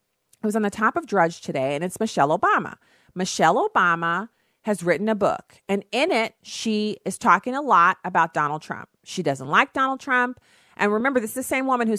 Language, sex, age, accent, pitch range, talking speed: English, female, 40-59, American, 160-210 Hz, 210 wpm